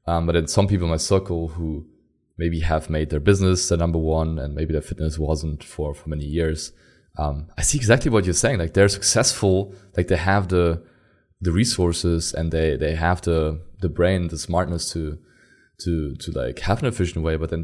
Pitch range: 80-95 Hz